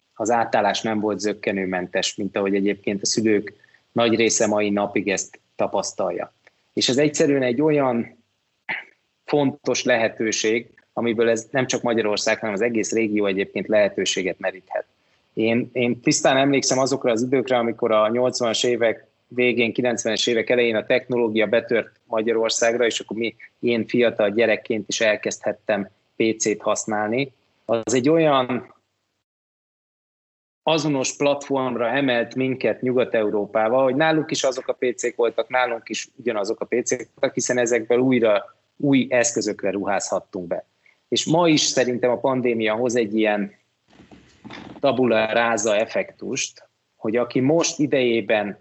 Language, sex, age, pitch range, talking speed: Hungarian, male, 20-39, 110-130 Hz, 130 wpm